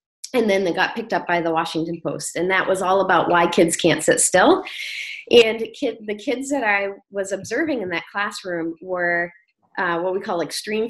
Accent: American